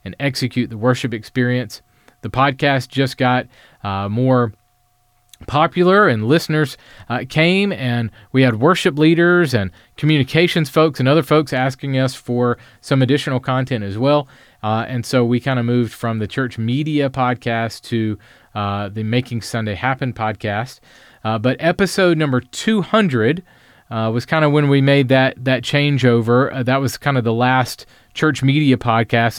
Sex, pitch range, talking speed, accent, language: male, 120-150 Hz, 160 wpm, American, English